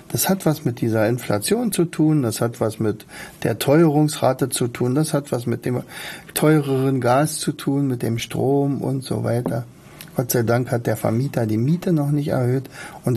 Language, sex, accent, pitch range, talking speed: German, male, German, 115-155 Hz, 195 wpm